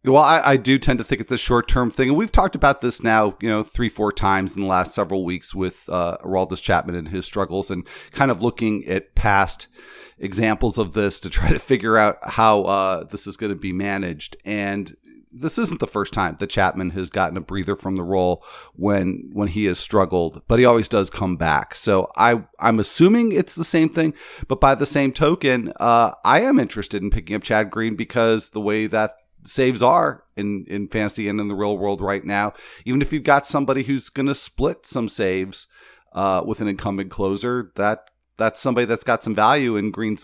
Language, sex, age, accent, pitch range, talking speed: English, male, 40-59, American, 100-120 Hz, 215 wpm